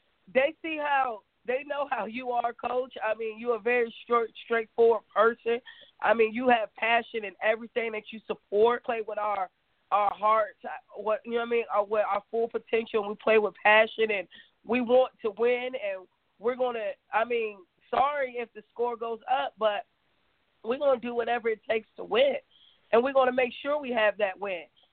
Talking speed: 205 wpm